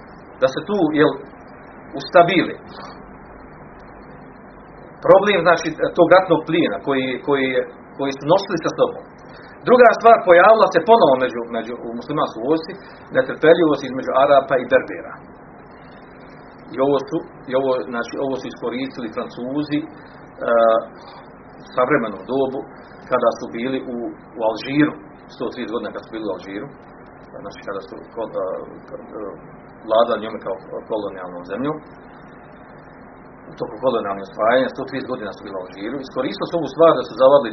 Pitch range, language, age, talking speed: 130-195 Hz, Croatian, 40-59, 140 wpm